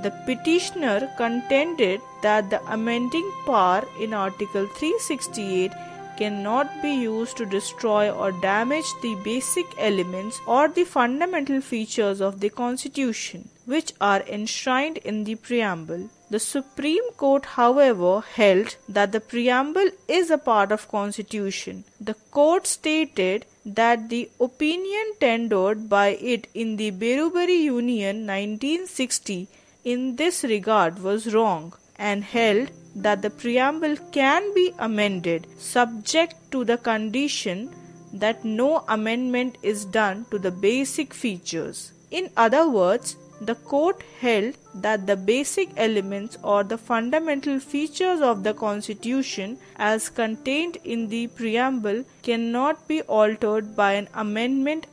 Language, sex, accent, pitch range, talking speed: English, female, Indian, 205-275 Hz, 125 wpm